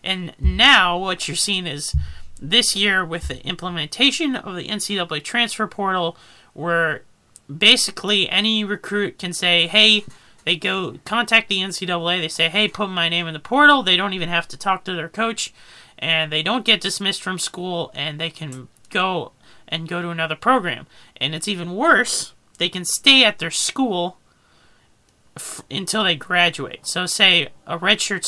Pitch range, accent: 160-200 Hz, American